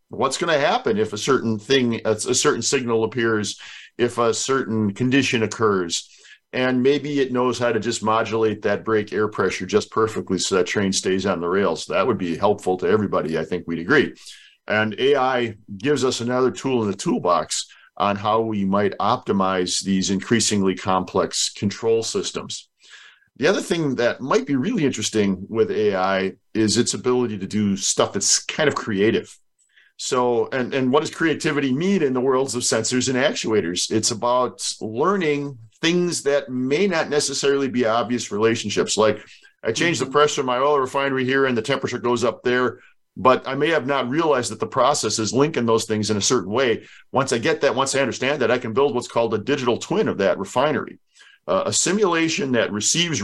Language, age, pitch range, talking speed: English, 50-69, 105-135 Hz, 190 wpm